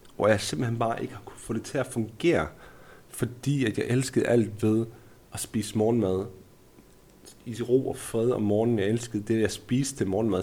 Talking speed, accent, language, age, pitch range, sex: 195 wpm, native, Danish, 30-49, 105-125 Hz, male